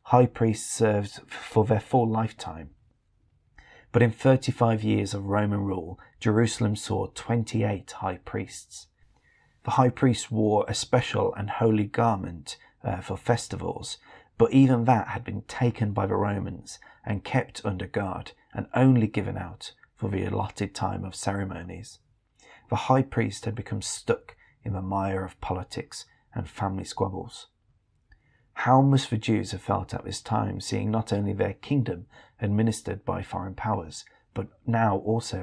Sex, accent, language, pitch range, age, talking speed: male, British, English, 100-115 Hz, 30-49, 150 wpm